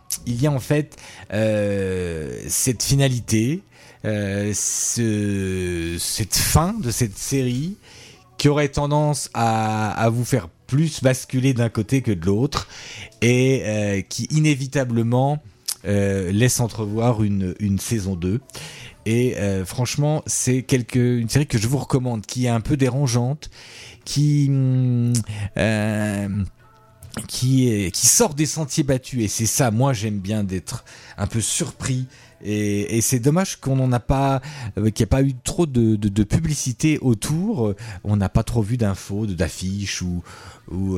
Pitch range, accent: 100-130 Hz, French